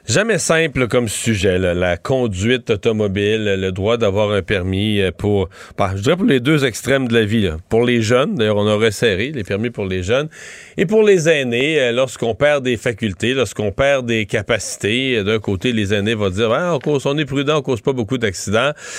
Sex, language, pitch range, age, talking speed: male, French, 105-145 Hz, 40-59, 210 wpm